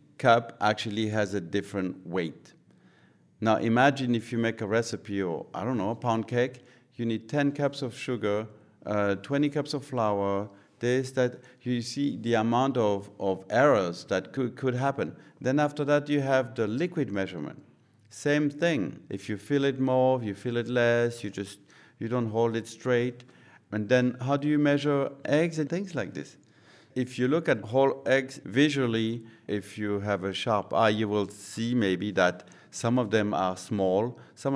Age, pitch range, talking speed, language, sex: 50-69, 105-135 Hz, 180 wpm, English, male